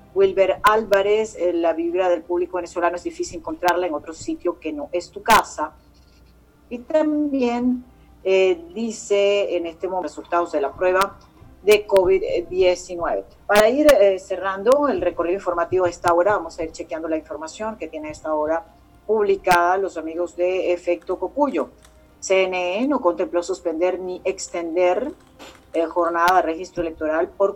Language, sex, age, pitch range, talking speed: Spanish, female, 40-59, 165-195 Hz, 150 wpm